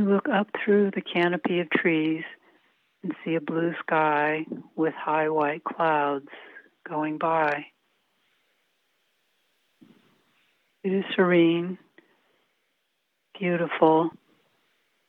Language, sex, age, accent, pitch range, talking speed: English, female, 60-79, American, 160-180 Hz, 90 wpm